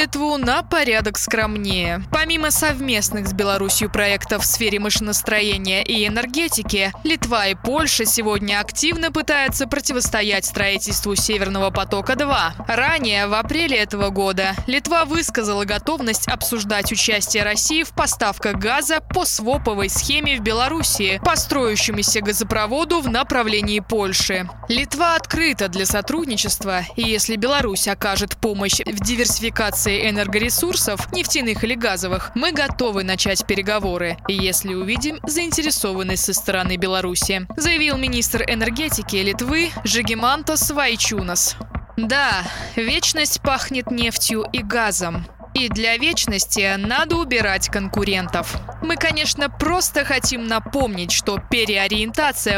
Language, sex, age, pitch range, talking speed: Russian, female, 20-39, 205-280 Hz, 115 wpm